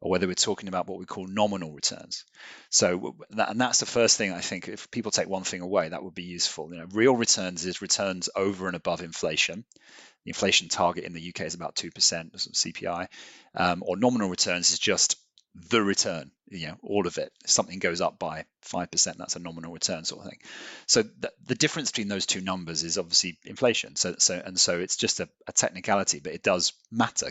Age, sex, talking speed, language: 30-49, male, 220 wpm, English